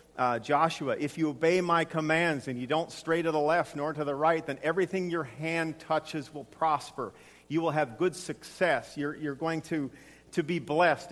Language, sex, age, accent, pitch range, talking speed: English, male, 50-69, American, 145-180 Hz, 200 wpm